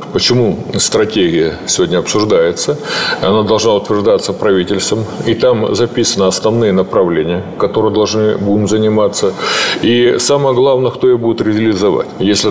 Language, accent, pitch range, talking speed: Russian, native, 100-135 Hz, 120 wpm